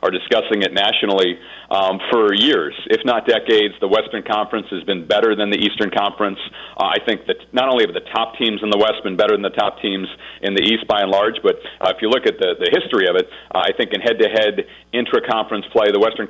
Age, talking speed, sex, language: 40-59, 240 wpm, male, English